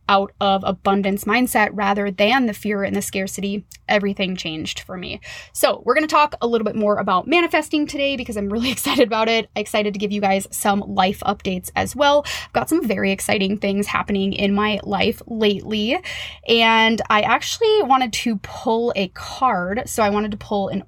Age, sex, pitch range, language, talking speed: 20-39, female, 200-255 Hz, English, 195 wpm